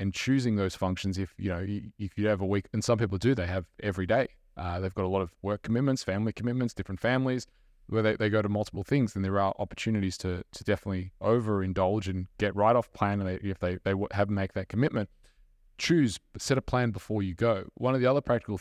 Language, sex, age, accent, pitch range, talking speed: English, male, 20-39, Australian, 95-115 Hz, 230 wpm